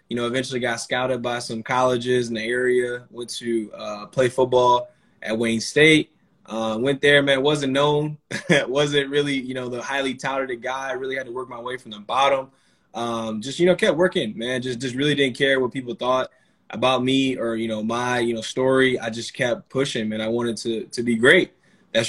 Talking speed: 215 wpm